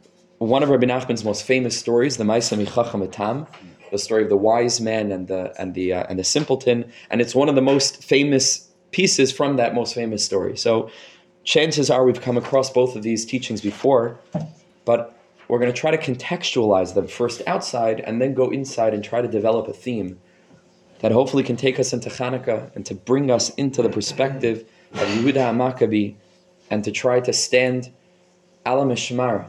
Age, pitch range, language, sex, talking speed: 20-39, 105-130 Hz, English, male, 185 wpm